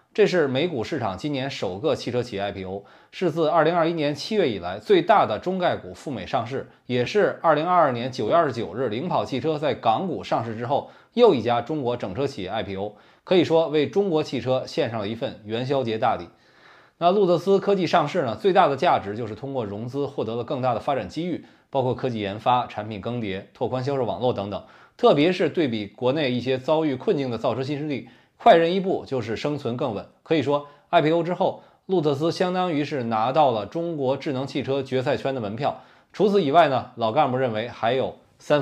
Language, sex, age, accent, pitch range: Chinese, male, 20-39, native, 120-160 Hz